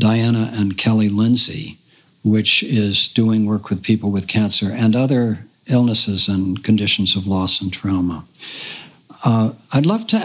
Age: 60-79